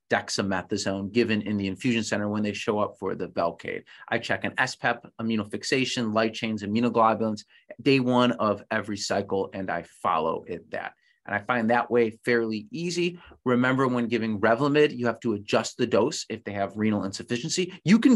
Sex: male